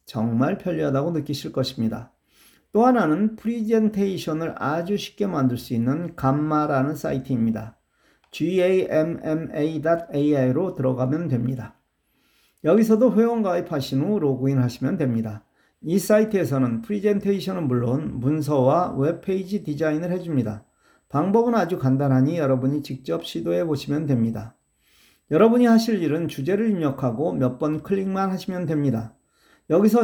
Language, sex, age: Korean, male, 40-59